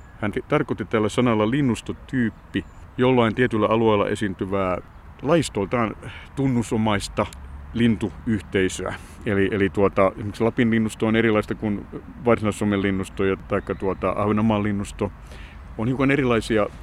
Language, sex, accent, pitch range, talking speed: Finnish, male, native, 95-115 Hz, 110 wpm